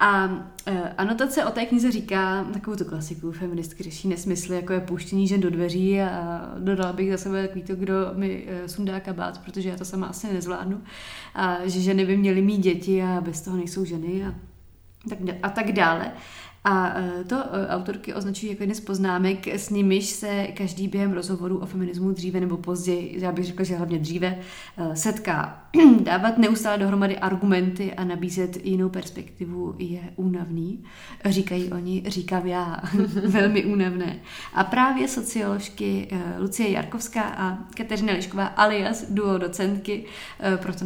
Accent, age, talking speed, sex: native, 30-49, 155 wpm, female